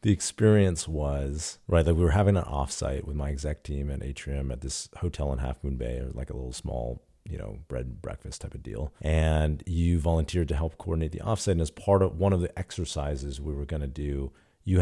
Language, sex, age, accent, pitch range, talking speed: English, male, 40-59, American, 75-90 Hz, 230 wpm